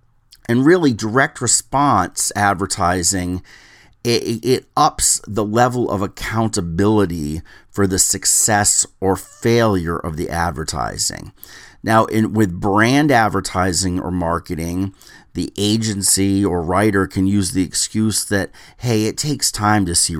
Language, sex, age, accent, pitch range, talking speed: English, male, 40-59, American, 90-110 Hz, 125 wpm